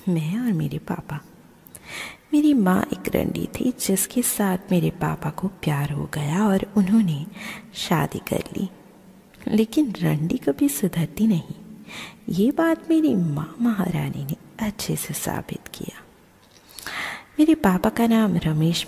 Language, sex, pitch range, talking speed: Hindi, female, 165-225 Hz, 135 wpm